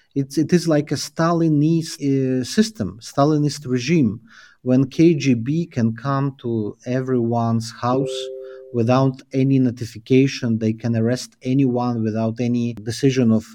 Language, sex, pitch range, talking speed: English, male, 115-140 Hz, 125 wpm